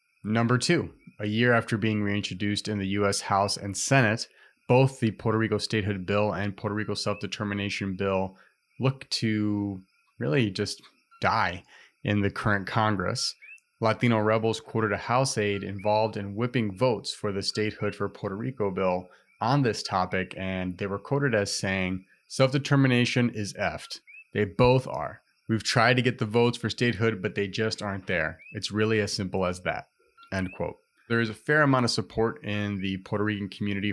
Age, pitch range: 30-49, 100-115 Hz